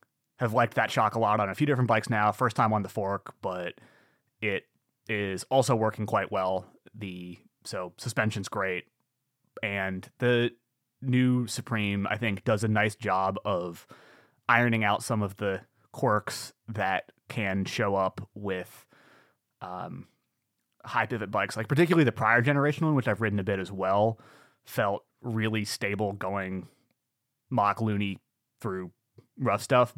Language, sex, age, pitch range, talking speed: English, male, 30-49, 95-120 Hz, 150 wpm